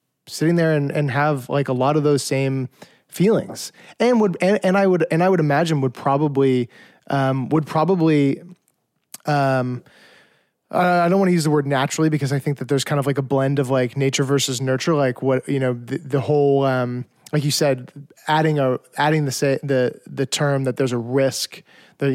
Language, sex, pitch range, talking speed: English, male, 130-155 Hz, 200 wpm